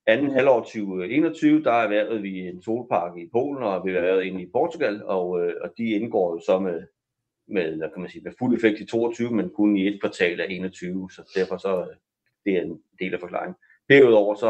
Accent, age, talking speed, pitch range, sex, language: native, 30-49, 225 wpm, 95-140 Hz, male, Danish